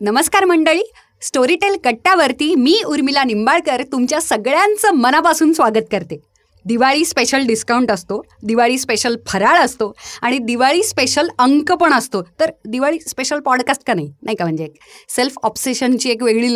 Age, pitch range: 30-49, 215-285 Hz